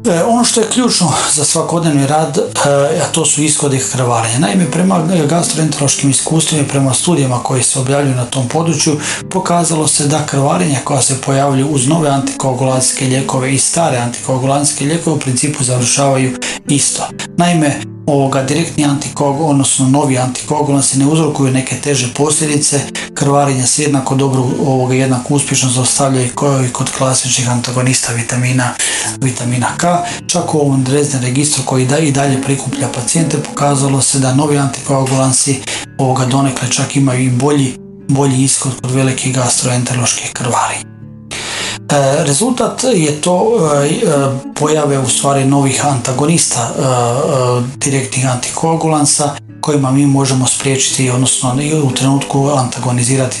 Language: Croatian